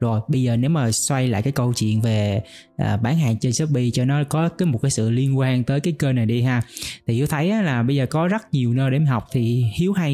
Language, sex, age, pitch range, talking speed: Vietnamese, male, 20-39, 120-160 Hz, 265 wpm